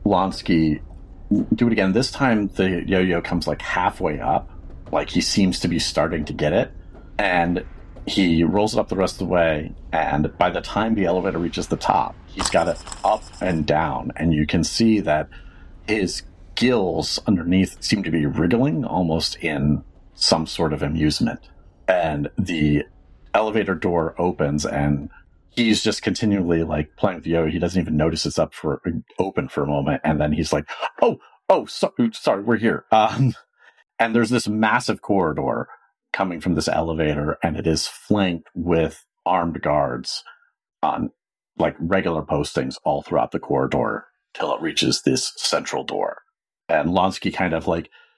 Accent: American